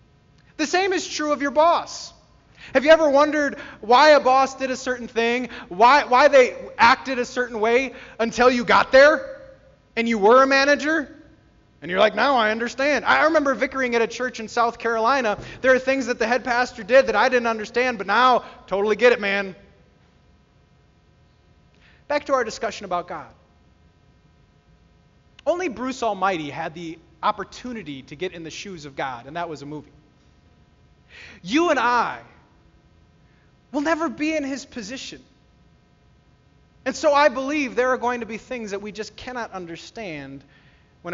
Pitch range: 170-265 Hz